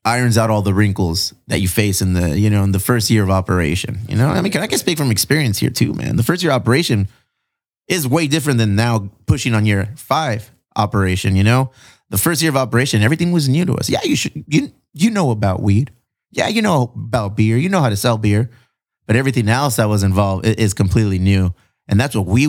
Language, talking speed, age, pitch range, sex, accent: English, 245 wpm, 30-49, 100-125 Hz, male, American